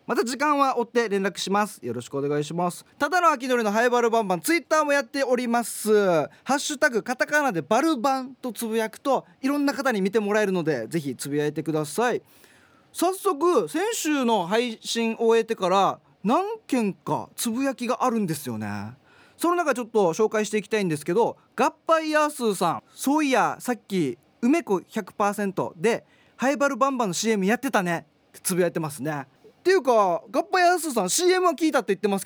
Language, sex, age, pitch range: Japanese, male, 20-39, 190-285 Hz